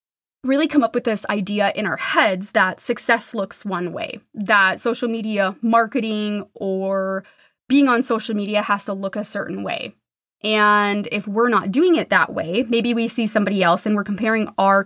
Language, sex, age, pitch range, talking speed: English, female, 20-39, 200-250 Hz, 185 wpm